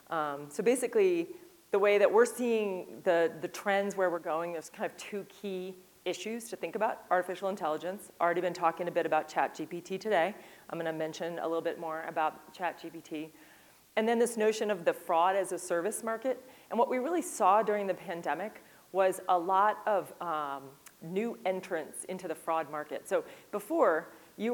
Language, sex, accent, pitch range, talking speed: English, female, American, 165-195 Hz, 190 wpm